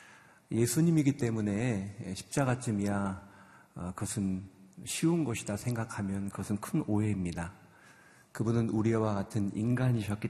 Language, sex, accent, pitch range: Korean, male, native, 100-120 Hz